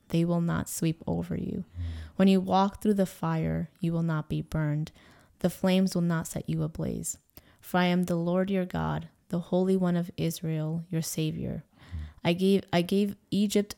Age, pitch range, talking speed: 20-39, 160-185 Hz, 185 wpm